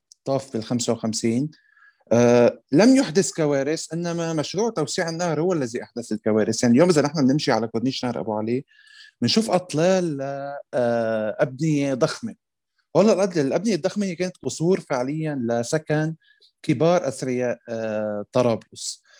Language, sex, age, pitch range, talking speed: Arabic, male, 20-39, 120-165 Hz, 140 wpm